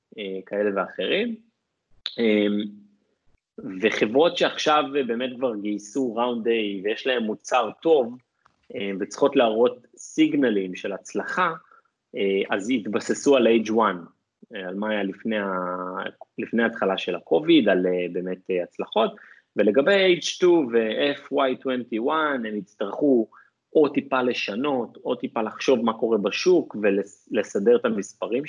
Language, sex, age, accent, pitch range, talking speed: Hebrew, male, 30-49, Italian, 100-140 Hz, 105 wpm